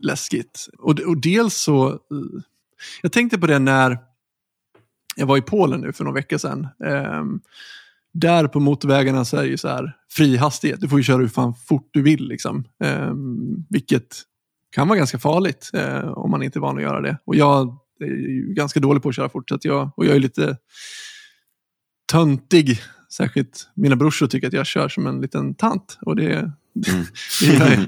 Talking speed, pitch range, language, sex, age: 185 wpm, 125-160 Hz, Swedish, male, 20-39